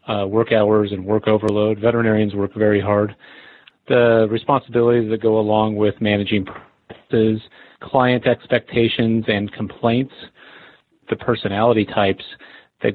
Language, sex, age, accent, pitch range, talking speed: English, male, 30-49, American, 100-115 Hz, 120 wpm